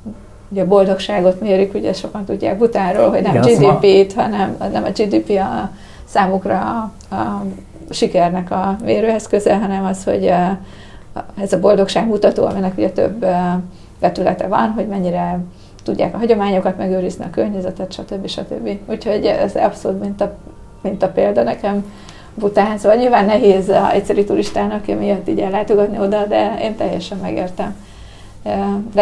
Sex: female